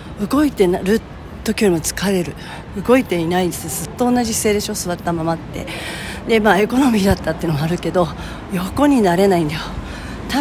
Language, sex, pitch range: Japanese, female, 165-200 Hz